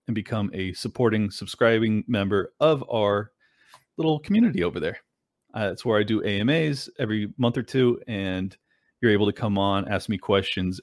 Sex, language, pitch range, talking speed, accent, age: male, English, 100-130 Hz, 165 wpm, American, 30-49